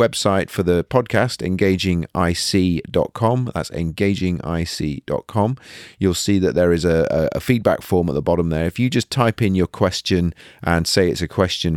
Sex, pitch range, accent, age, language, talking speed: male, 75-100 Hz, British, 30-49, English, 165 wpm